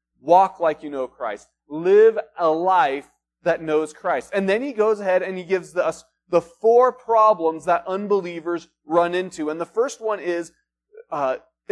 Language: English